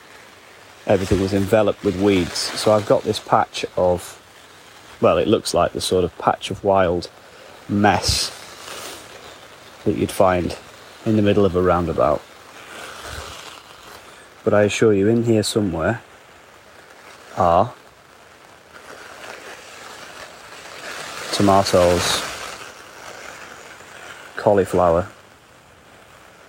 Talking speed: 95 wpm